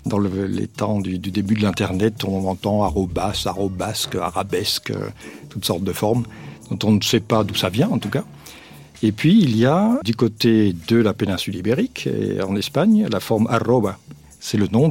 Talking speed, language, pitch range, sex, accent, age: 220 wpm, French, 95-110 Hz, male, French, 60-79